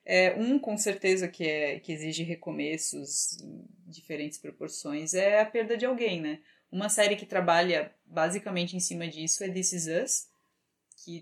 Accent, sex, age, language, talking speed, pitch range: Brazilian, female, 20-39, Portuguese, 165 wpm, 175-215 Hz